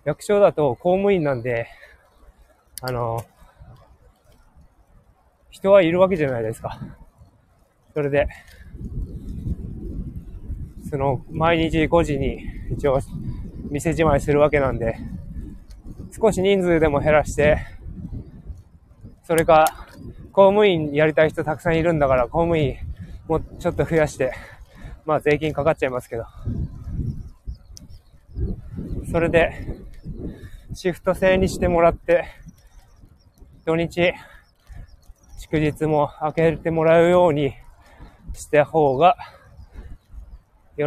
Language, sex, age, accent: Japanese, male, 20-39, native